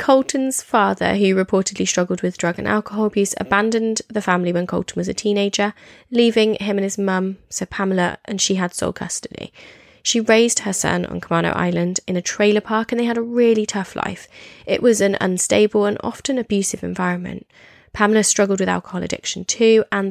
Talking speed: 190 wpm